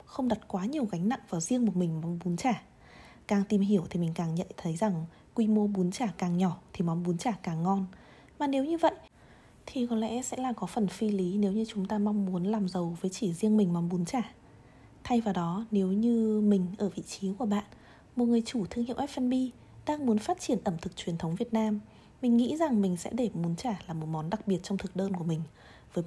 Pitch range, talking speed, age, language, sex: 180-240 Hz, 250 wpm, 20-39, Vietnamese, female